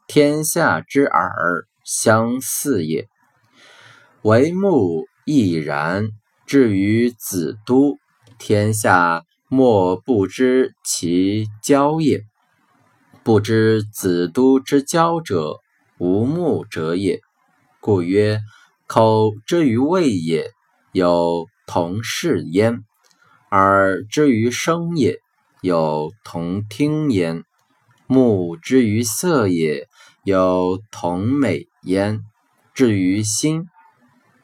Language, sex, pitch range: Chinese, male, 95-135 Hz